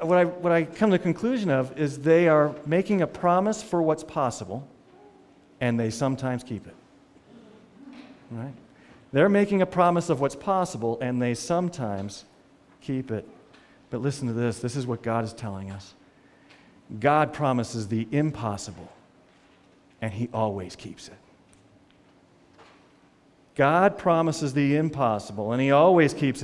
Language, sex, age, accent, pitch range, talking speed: English, male, 40-59, American, 125-190 Hz, 145 wpm